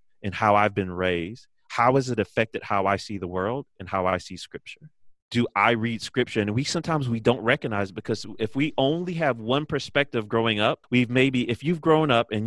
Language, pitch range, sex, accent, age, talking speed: English, 105-125 Hz, male, American, 30-49, 215 wpm